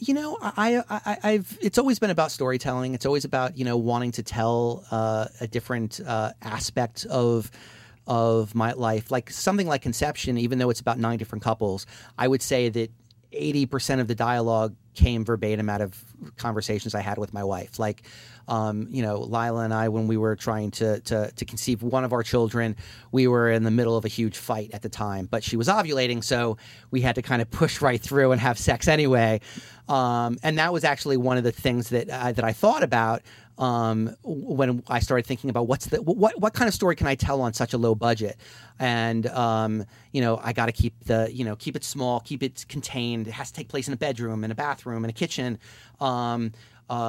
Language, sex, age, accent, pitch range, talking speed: English, male, 30-49, American, 115-135 Hz, 220 wpm